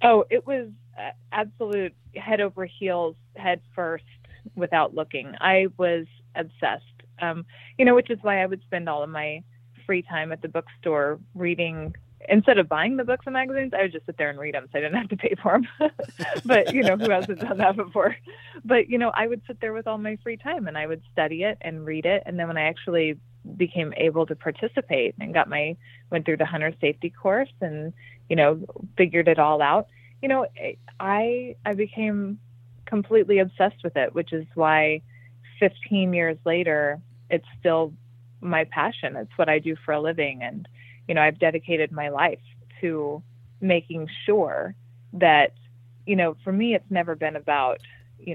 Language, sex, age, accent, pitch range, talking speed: English, female, 20-39, American, 145-195 Hz, 190 wpm